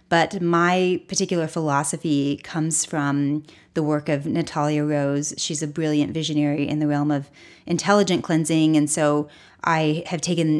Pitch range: 150-175 Hz